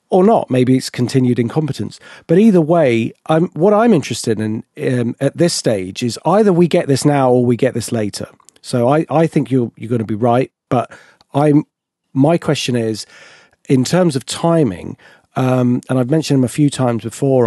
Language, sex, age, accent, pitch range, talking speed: English, male, 40-59, British, 115-145 Hz, 195 wpm